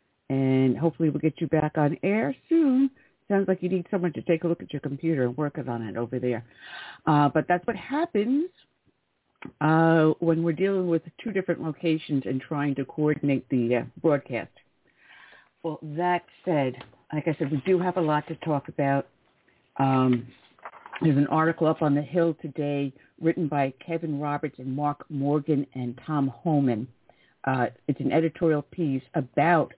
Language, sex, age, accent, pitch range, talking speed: English, female, 60-79, American, 140-180 Hz, 175 wpm